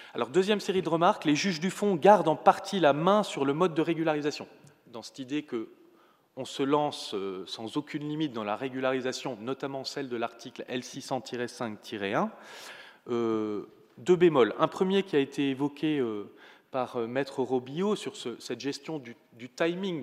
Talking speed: 170 wpm